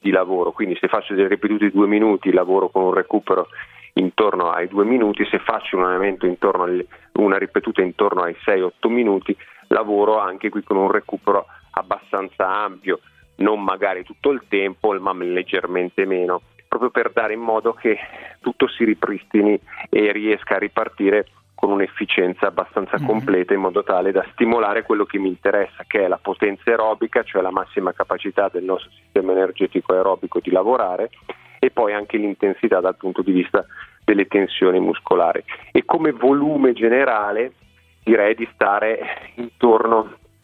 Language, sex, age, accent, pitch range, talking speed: Italian, male, 30-49, native, 95-110 Hz, 155 wpm